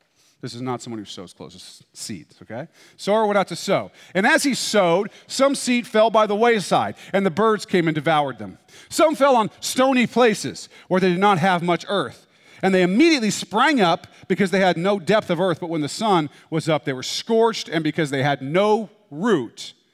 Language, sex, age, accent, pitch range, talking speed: English, male, 40-59, American, 155-215 Hz, 210 wpm